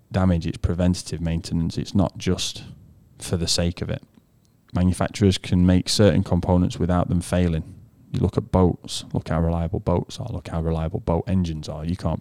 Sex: male